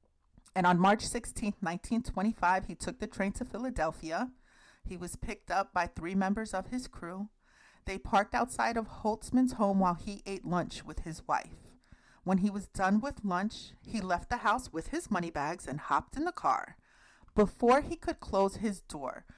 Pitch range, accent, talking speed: 180-235 Hz, American, 185 wpm